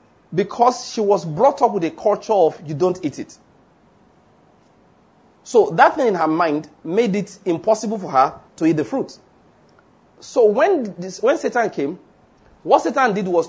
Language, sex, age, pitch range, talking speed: English, male, 40-59, 160-235 Hz, 170 wpm